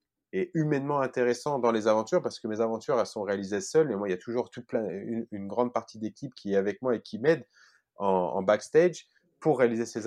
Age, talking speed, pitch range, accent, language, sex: 30-49, 240 wpm, 105-125 Hz, French, French, male